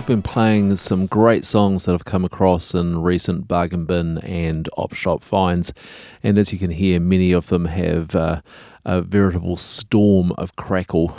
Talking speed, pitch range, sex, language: 175 wpm, 85-95 Hz, male, English